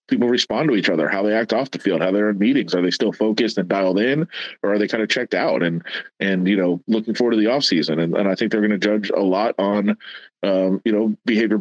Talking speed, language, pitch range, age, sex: 280 wpm, English, 100-110 Hz, 30-49, male